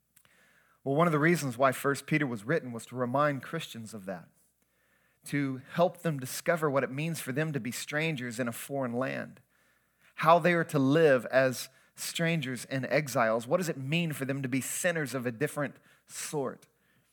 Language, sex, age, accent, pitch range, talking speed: English, male, 30-49, American, 130-155 Hz, 190 wpm